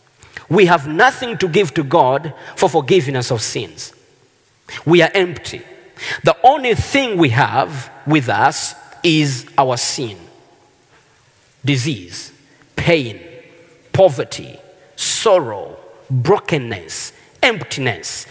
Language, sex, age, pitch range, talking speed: Swedish, male, 40-59, 150-225 Hz, 100 wpm